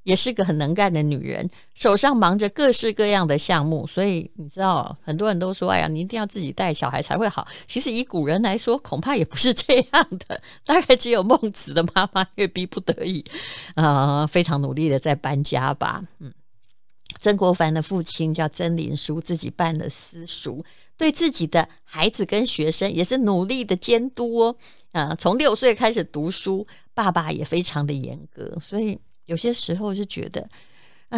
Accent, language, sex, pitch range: American, Chinese, female, 155-205 Hz